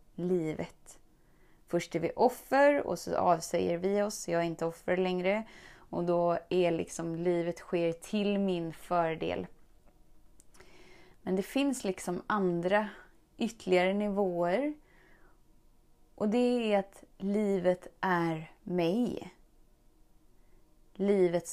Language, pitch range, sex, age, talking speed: Swedish, 170-205 Hz, female, 20-39, 110 wpm